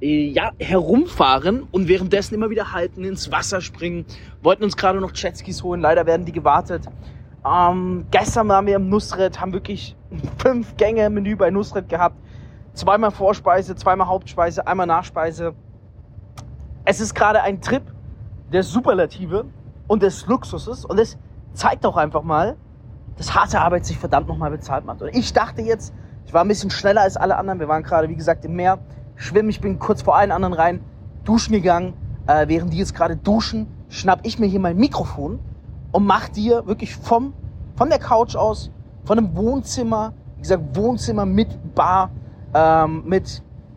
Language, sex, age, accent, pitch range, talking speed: German, male, 20-39, German, 160-210 Hz, 170 wpm